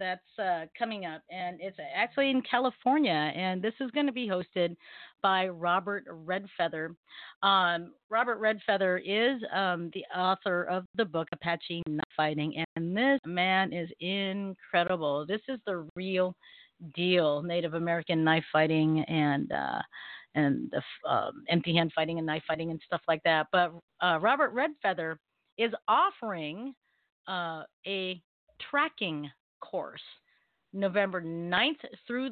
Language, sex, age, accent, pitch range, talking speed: English, female, 40-59, American, 170-230 Hz, 135 wpm